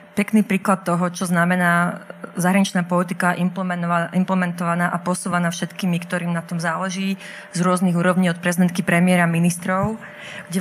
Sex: female